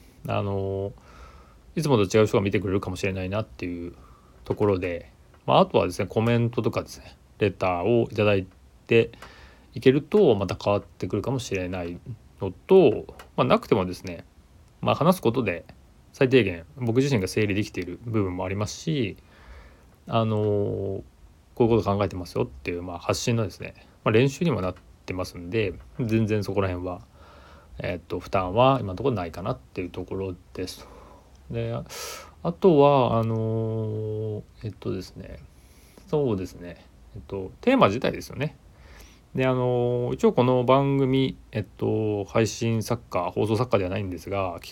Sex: male